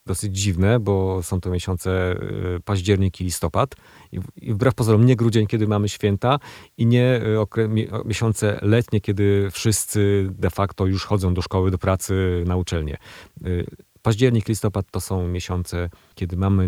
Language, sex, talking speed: Polish, male, 145 wpm